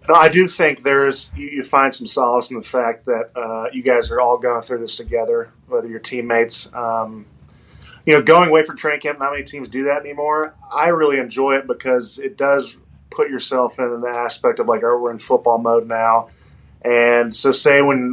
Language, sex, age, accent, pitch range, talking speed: English, male, 20-39, American, 120-160 Hz, 210 wpm